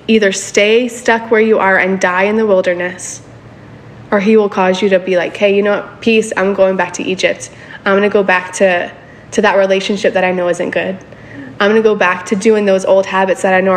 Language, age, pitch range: English, 20-39, 185-220 Hz